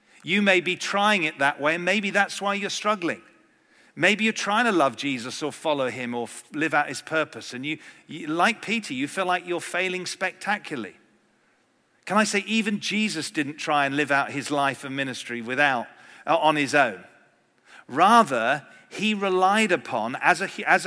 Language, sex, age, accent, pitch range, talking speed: English, male, 40-59, British, 140-190 Hz, 185 wpm